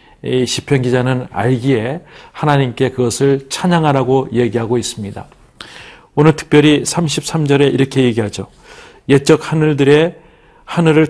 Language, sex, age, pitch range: Korean, male, 40-59, 125-155 Hz